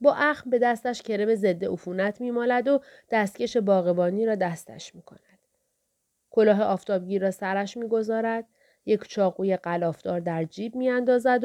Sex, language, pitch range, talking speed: female, Persian, 180-240 Hz, 130 wpm